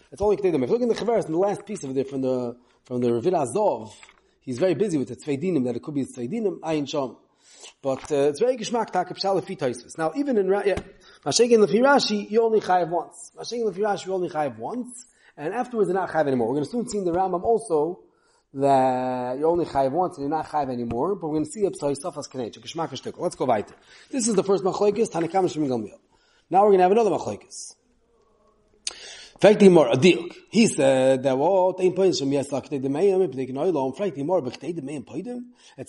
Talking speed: 225 wpm